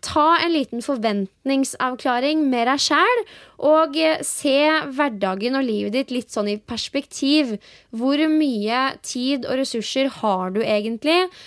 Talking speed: 125 wpm